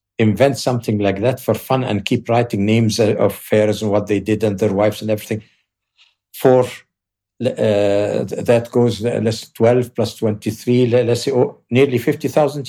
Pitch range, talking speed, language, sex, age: 100-120 Hz, 160 wpm, English, male, 60-79